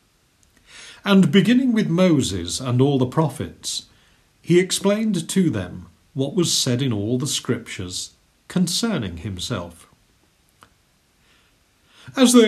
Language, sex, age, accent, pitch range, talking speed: English, male, 50-69, British, 100-155 Hz, 110 wpm